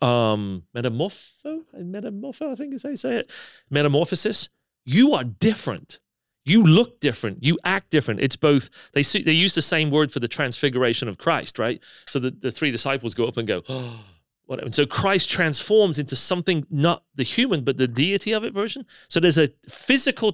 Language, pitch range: English, 125-180 Hz